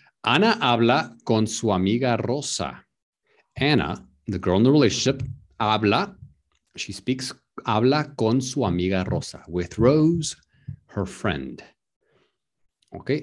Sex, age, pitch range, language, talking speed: male, 50-69, 90-130 Hz, English, 115 wpm